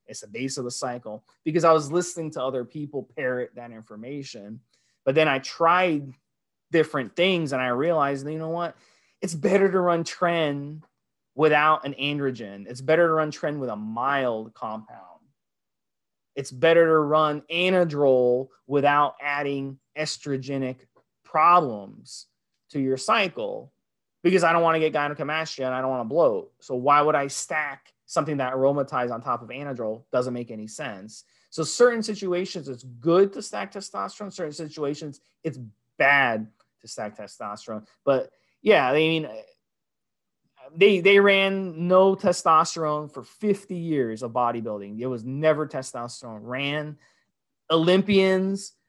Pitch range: 130-165 Hz